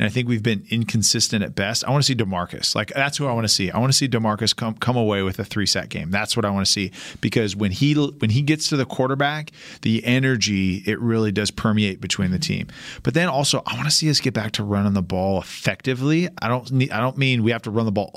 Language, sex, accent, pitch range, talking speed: English, male, American, 105-130 Hz, 275 wpm